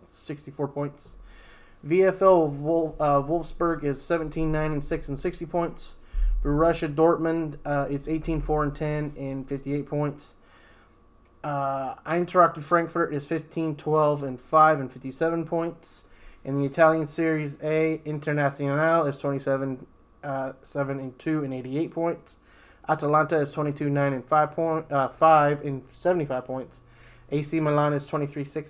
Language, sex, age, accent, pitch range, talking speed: English, male, 20-39, American, 135-165 Hz, 140 wpm